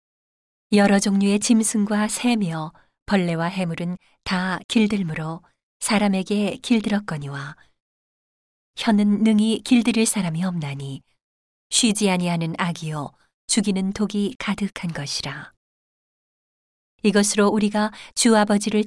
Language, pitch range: Korean, 170-210 Hz